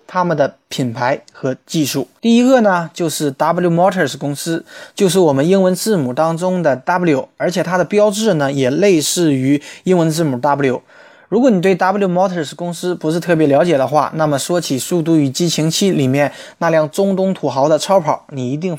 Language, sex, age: Chinese, male, 20-39